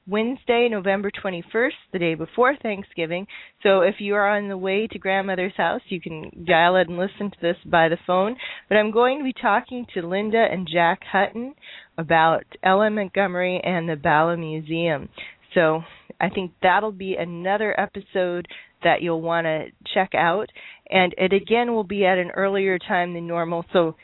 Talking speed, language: 175 wpm, English